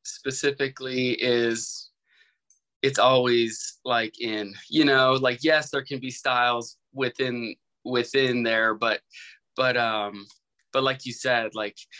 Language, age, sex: English, 20-39, male